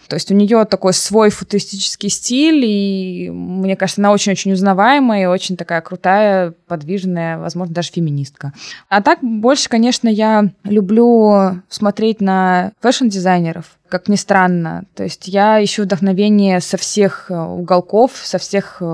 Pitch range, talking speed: 175-215 Hz, 140 wpm